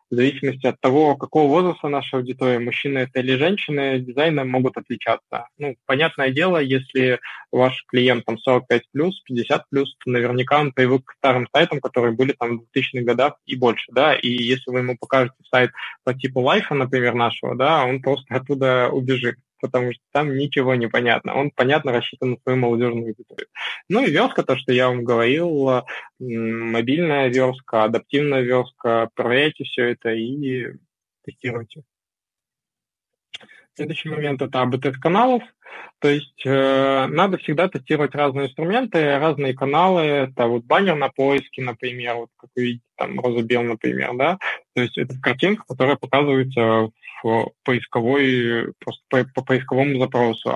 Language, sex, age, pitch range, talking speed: Russian, male, 20-39, 125-140 Hz, 150 wpm